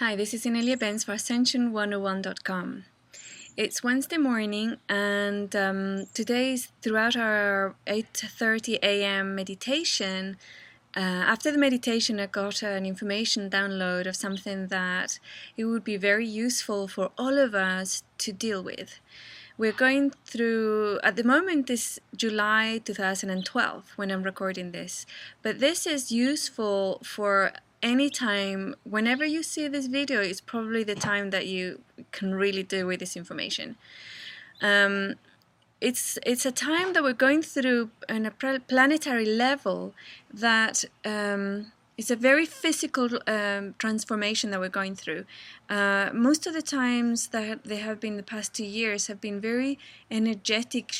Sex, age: female, 20-39